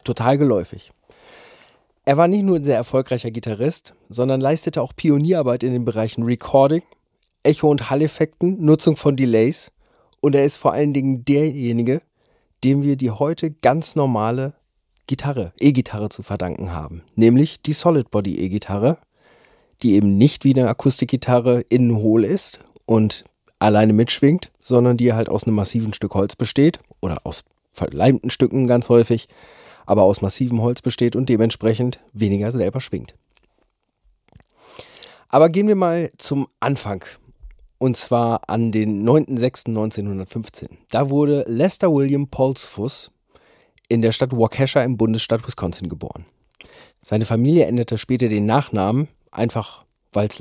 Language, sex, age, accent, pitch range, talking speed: German, male, 40-59, German, 110-140 Hz, 140 wpm